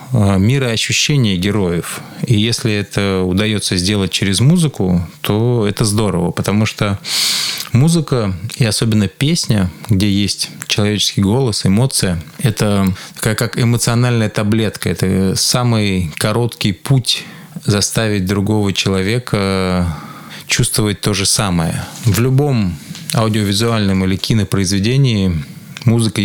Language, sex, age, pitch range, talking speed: Russian, male, 20-39, 95-120 Hz, 105 wpm